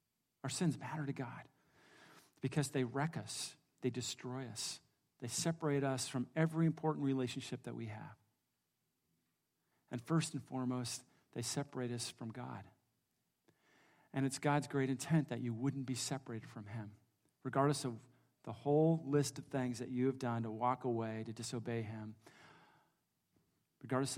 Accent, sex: American, male